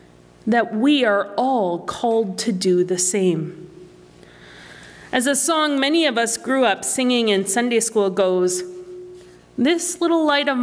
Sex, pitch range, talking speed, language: female, 175-265 Hz, 145 wpm, English